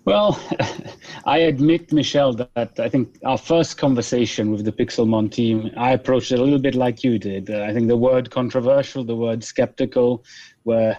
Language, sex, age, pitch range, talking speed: English, male, 30-49, 115-145 Hz, 175 wpm